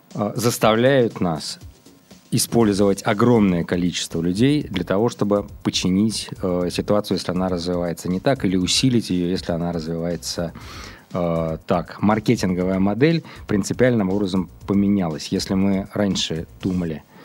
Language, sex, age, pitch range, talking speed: Russian, male, 20-39, 90-105 Hz, 120 wpm